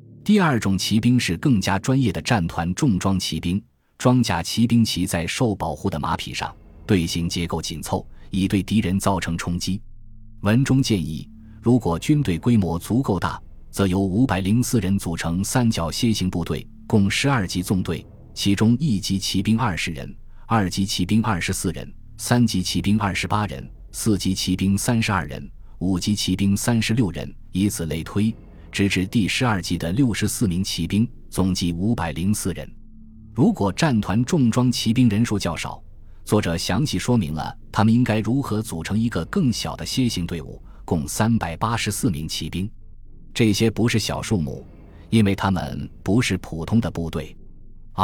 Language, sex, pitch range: Chinese, male, 85-115 Hz